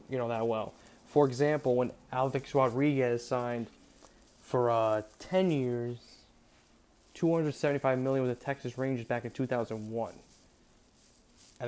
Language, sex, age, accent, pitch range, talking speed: English, male, 20-39, American, 115-140 Hz, 125 wpm